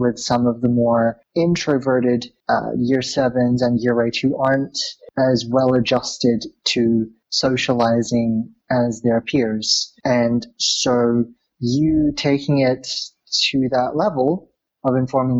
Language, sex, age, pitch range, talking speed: English, male, 30-49, 120-140 Hz, 120 wpm